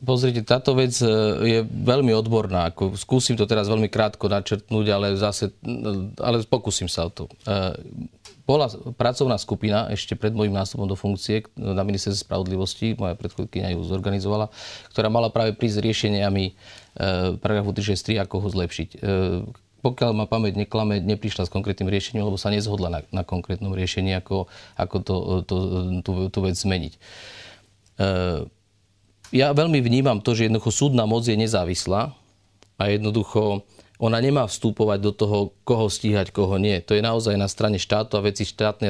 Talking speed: 150 wpm